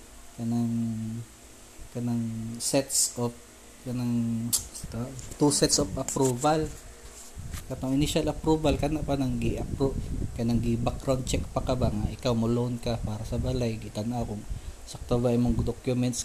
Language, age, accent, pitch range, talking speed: Filipino, 20-39, native, 115-135 Hz, 135 wpm